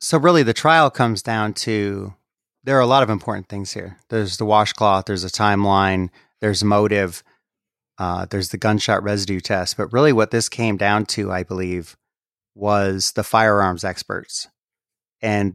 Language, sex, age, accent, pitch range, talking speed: English, male, 30-49, American, 95-115 Hz, 165 wpm